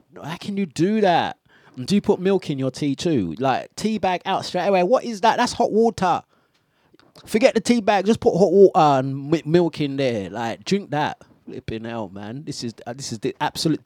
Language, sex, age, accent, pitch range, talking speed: English, male, 30-49, British, 130-210 Hz, 220 wpm